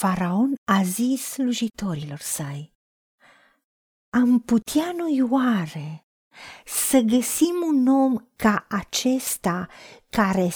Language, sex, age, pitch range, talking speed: Romanian, female, 50-69, 195-275 Hz, 90 wpm